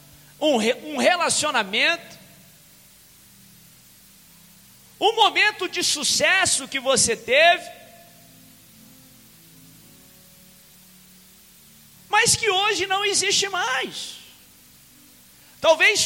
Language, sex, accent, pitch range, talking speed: Portuguese, male, Brazilian, 245-350 Hz, 60 wpm